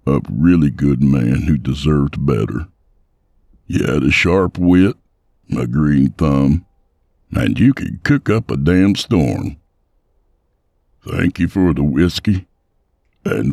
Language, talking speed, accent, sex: English, 130 wpm, American, male